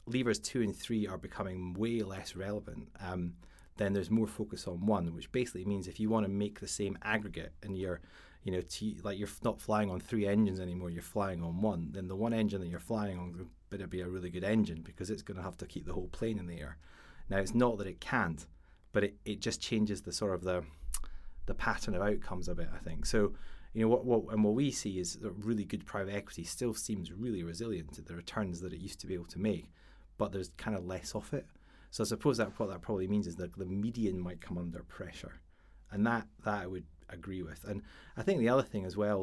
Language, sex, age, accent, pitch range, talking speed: English, male, 30-49, British, 85-105 Hz, 250 wpm